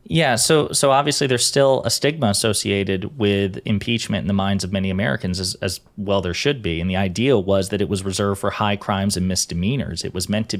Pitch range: 100-120 Hz